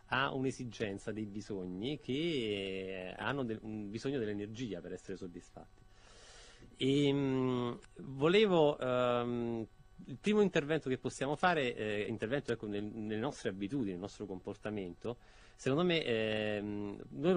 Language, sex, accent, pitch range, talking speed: Italian, male, native, 100-130 Hz, 125 wpm